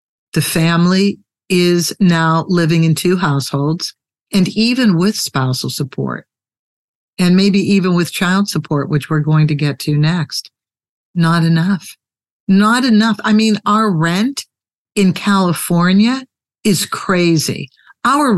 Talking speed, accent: 125 wpm, American